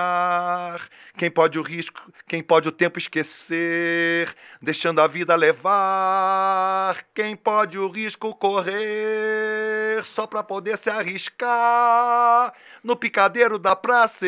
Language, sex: Portuguese, male